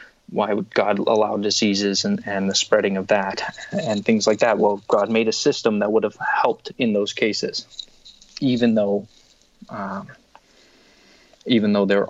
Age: 20-39